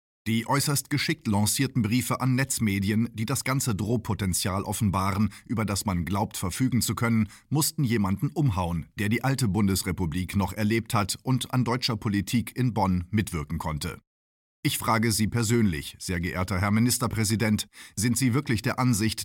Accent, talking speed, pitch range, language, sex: German, 155 wpm, 95-120 Hz, German, male